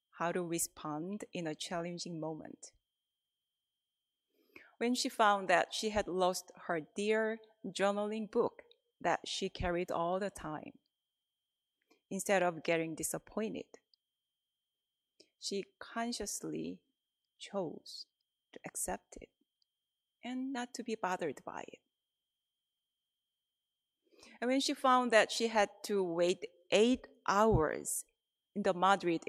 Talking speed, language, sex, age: 115 wpm, English, female, 30-49